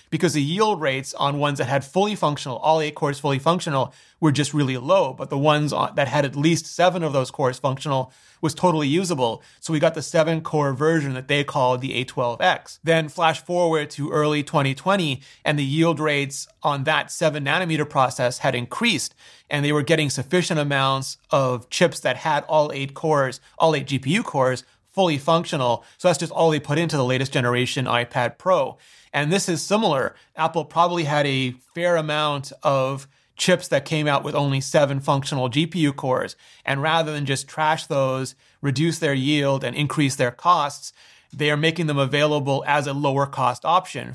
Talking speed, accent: 190 wpm, American